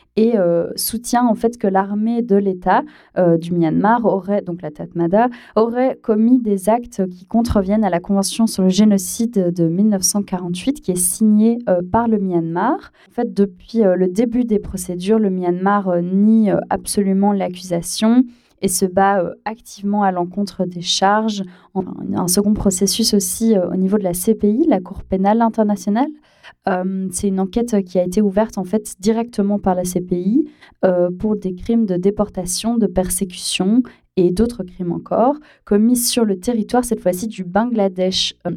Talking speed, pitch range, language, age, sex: 170 wpm, 190-230 Hz, French, 20-39, female